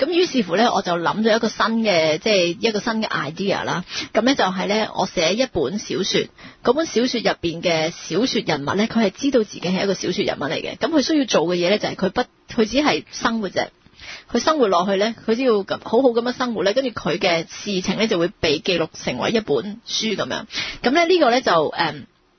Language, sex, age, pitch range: English, female, 30-49, 185-230 Hz